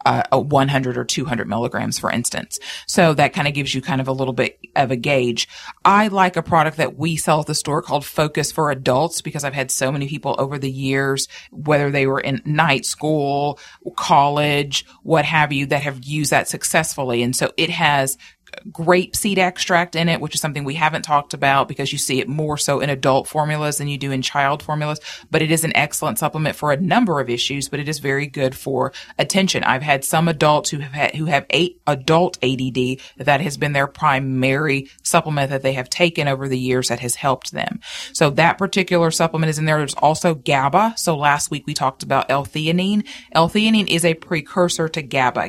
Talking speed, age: 210 wpm, 30-49